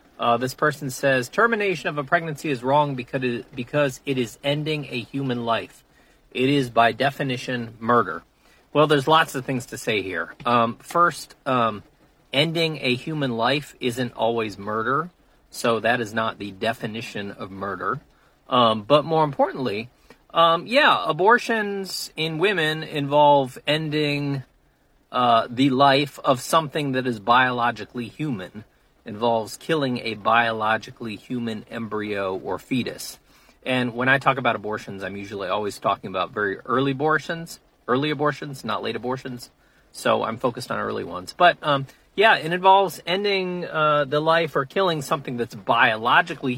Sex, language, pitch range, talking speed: male, English, 115-155 Hz, 150 wpm